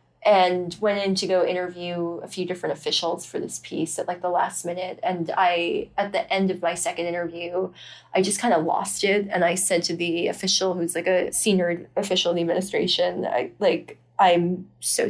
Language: English